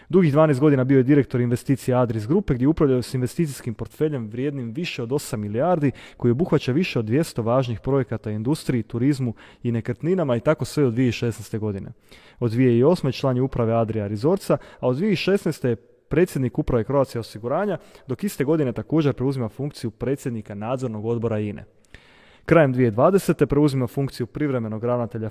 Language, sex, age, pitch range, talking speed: Croatian, male, 30-49, 115-145 Hz, 160 wpm